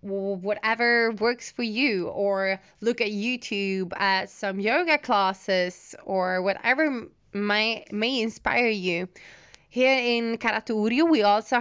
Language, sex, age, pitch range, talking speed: English, female, 20-39, 190-235 Hz, 125 wpm